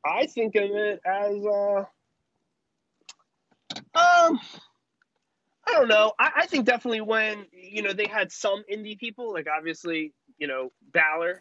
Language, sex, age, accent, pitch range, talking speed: English, male, 20-39, American, 165-225 Hz, 140 wpm